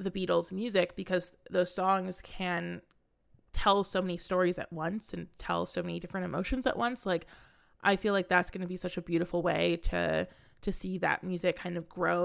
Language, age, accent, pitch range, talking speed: English, 20-39, American, 175-190 Hz, 200 wpm